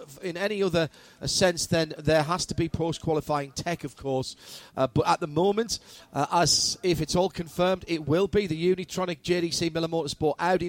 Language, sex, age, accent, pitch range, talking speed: English, male, 40-59, British, 140-170 Hz, 185 wpm